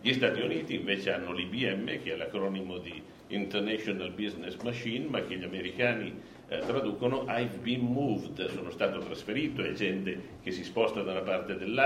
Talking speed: 165 wpm